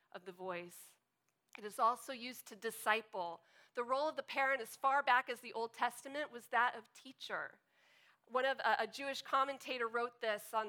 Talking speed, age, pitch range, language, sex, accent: 190 wpm, 40-59, 225-275 Hz, English, female, American